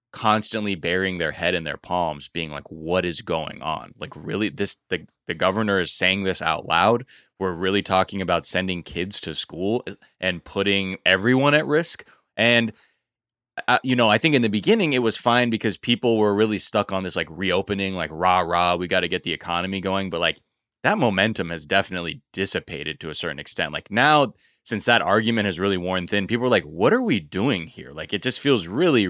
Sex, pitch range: male, 90-110 Hz